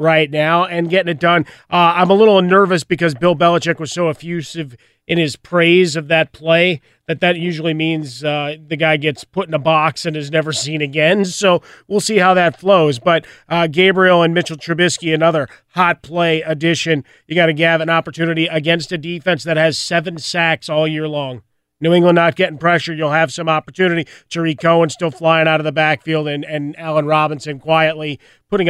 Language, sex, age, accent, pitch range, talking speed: English, male, 30-49, American, 150-170 Hz, 200 wpm